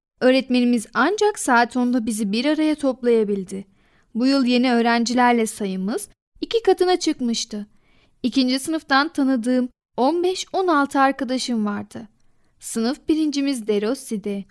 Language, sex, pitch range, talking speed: Turkish, female, 225-285 Hz, 105 wpm